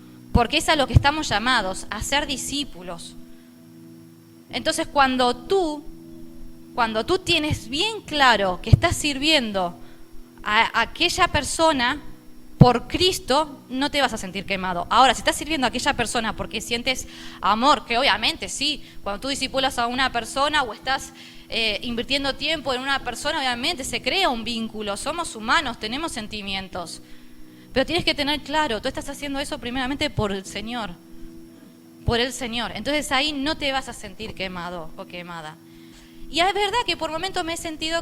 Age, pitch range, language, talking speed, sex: 20-39, 195-300 Hz, Spanish, 160 wpm, female